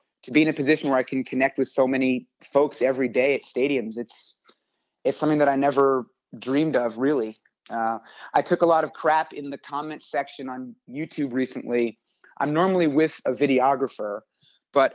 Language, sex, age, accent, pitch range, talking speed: English, male, 30-49, American, 135-160 Hz, 185 wpm